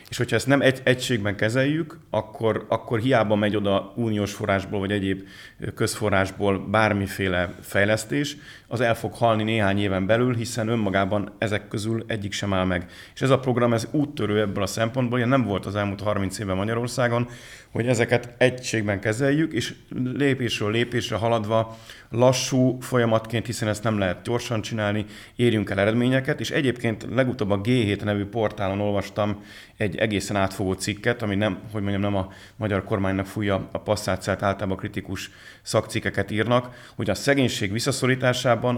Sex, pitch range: male, 100-120 Hz